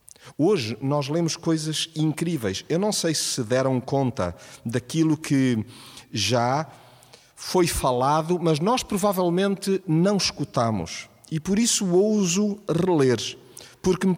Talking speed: 125 wpm